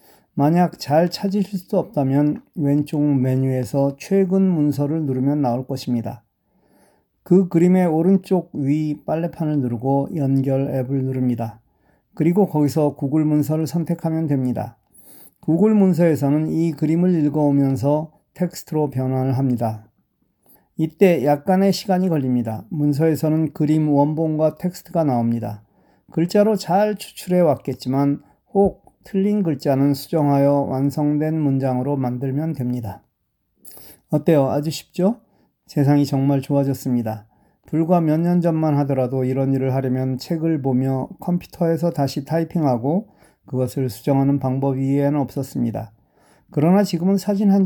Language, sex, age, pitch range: Korean, male, 40-59, 135-165 Hz